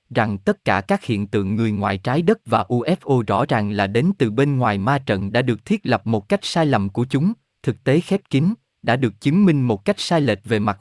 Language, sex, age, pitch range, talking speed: Vietnamese, male, 20-39, 110-160 Hz, 250 wpm